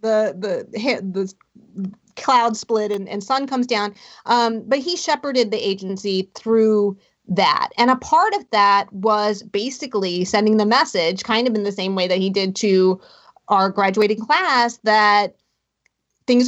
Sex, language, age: female, English, 30-49